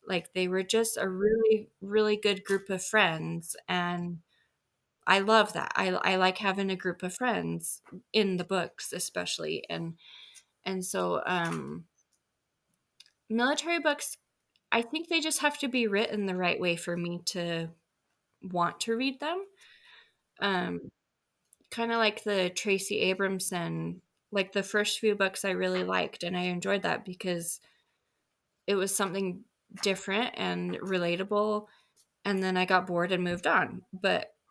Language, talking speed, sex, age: English, 150 wpm, female, 20-39